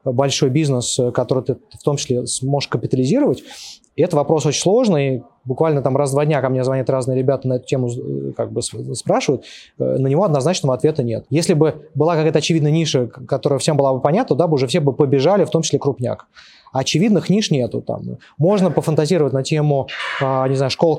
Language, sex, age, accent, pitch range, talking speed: Russian, male, 20-39, native, 130-155 Hz, 195 wpm